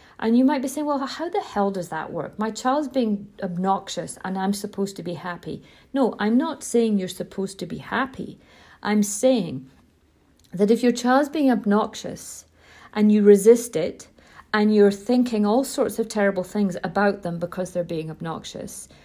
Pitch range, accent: 195-260 Hz, British